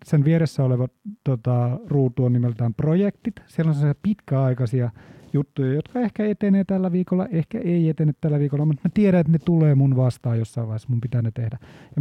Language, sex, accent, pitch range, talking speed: Finnish, male, native, 125-165 Hz, 185 wpm